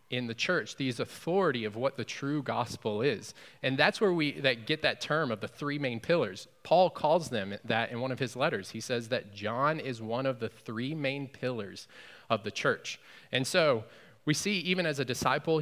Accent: American